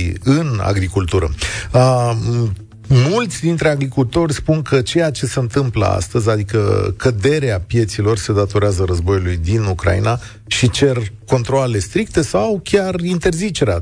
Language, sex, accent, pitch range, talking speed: Romanian, male, native, 100-135 Hz, 120 wpm